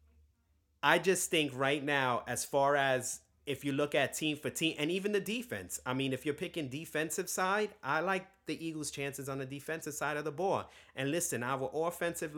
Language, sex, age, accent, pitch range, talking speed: English, male, 30-49, American, 120-160 Hz, 205 wpm